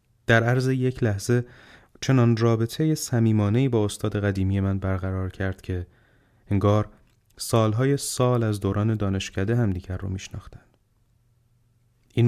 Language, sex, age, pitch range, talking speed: Persian, male, 30-49, 100-120 Hz, 115 wpm